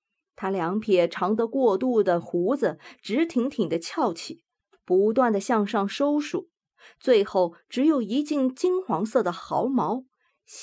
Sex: female